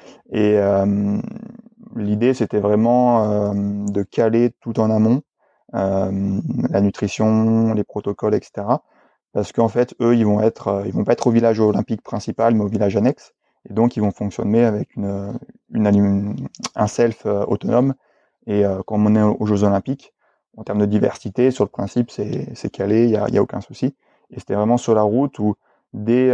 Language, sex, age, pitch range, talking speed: French, male, 30-49, 105-120 Hz, 185 wpm